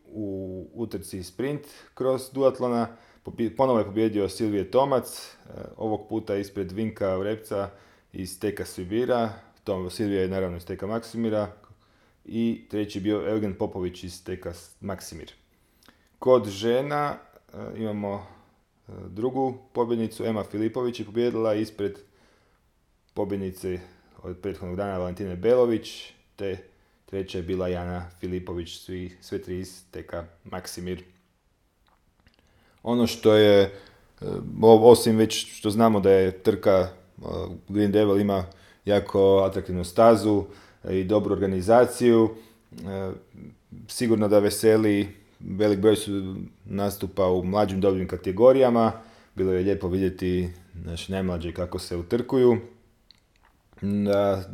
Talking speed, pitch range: 110 wpm, 95-110 Hz